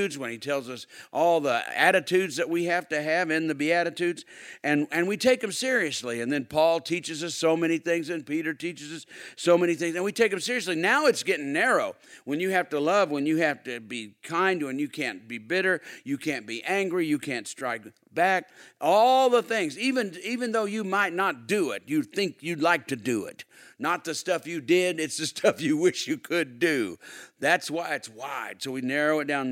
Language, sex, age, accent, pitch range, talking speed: English, male, 50-69, American, 150-200 Hz, 220 wpm